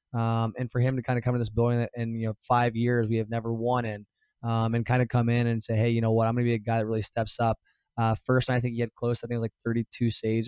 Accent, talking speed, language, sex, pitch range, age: American, 340 wpm, English, male, 110-120 Hz, 20-39